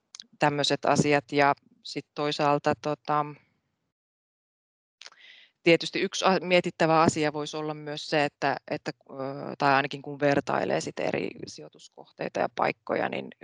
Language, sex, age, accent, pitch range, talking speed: Finnish, female, 20-39, native, 140-160 Hz, 110 wpm